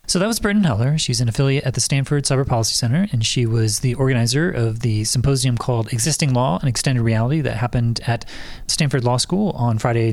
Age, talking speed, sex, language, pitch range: 30-49, 215 wpm, male, English, 115-135 Hz